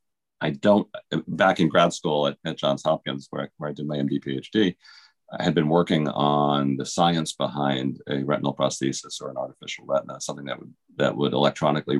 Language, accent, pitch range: English, American, 70-75 Hz